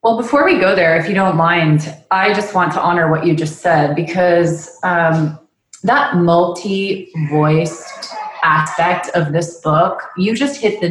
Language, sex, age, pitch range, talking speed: English, female, 30-49, 165-190 Hz, 165 wpm